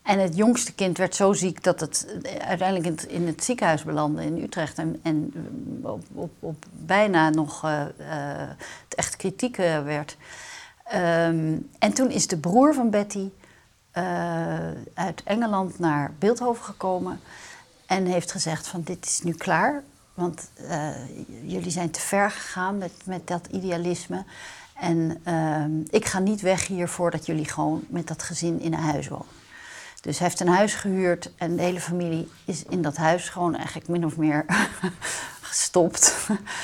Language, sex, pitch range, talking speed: Dutch, female, 165-215 Hz, 165 wpm